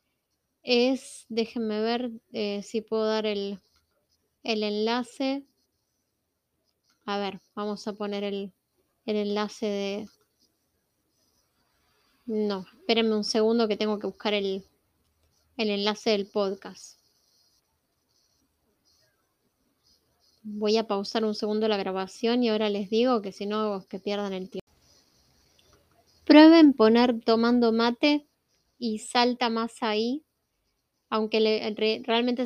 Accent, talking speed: Argentinian, 110 wpm